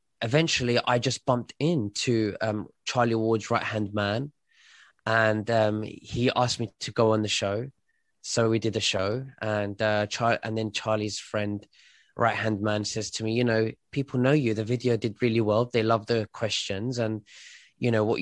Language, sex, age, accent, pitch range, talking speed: English, male, 20-39, British, 110-135 Hz, 190 wpm